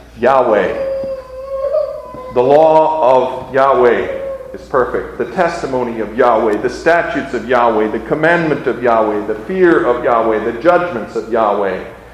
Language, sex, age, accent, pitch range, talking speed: English, male, 50-69, American, 125-200 Hz, 135 wpm